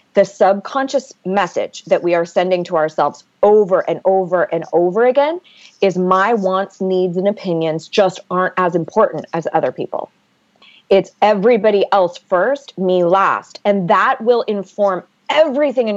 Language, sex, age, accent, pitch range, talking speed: English, female, 30-49, American, 175-225 Hz, 150 wpm